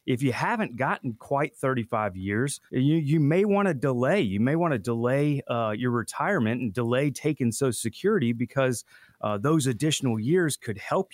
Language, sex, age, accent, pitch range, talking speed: English, male, 30-49, American, 115-150 Hz, 170 wpm